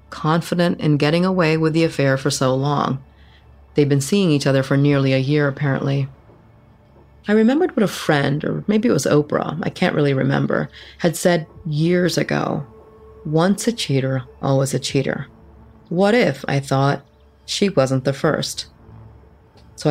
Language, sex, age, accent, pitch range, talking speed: English, female, 30-49, American, 135-160 Hz, 160 wpm